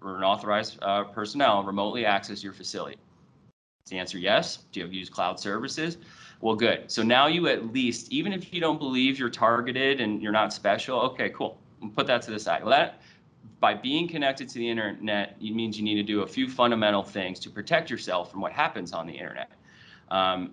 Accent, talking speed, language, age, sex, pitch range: American, 210 wpm, English, 30-49, male, 100-125 Hz